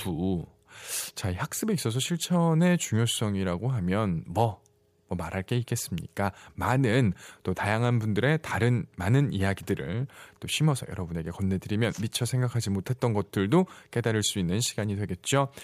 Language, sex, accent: Korean, male, native